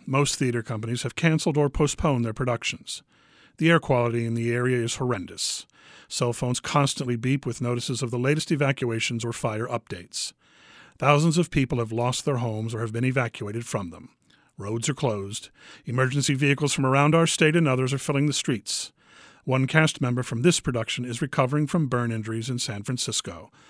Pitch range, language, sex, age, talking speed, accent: 120-150 Hz, English, male, 40-59, 180 wpm, American